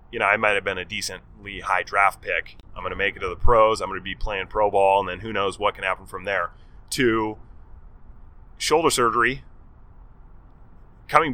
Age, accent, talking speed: 30-49, American, 205 wpm